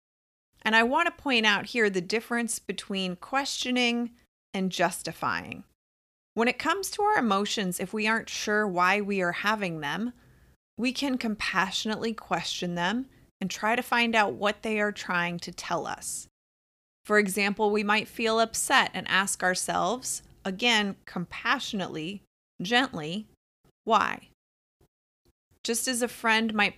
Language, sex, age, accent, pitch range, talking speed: English, female, 30-49, American, 180-230 Hz, 140 wpm